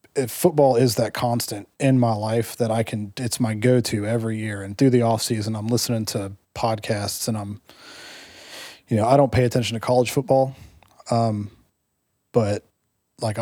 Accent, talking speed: American, 175 wpm